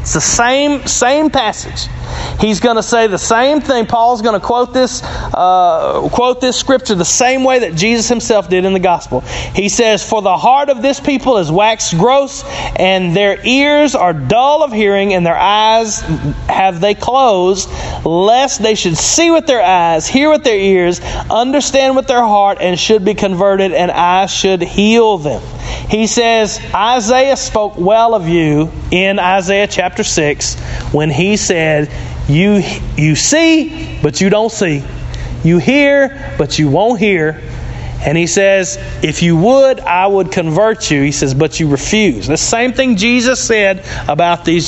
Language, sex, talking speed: English, male, 170 wpm